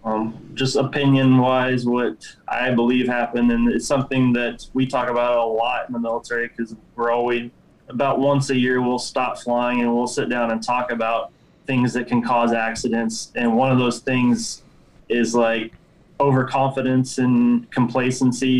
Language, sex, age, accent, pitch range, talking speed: Finnish, male, 20-39, American, 120-130 Hz, 160 wpm